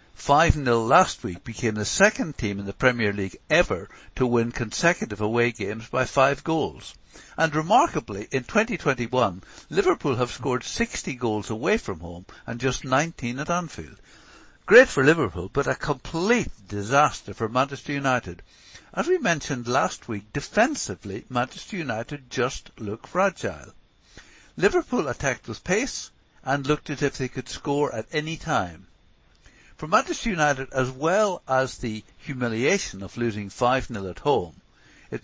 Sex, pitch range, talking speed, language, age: male, 110-150 Hz, 145 wpm, English, 60-79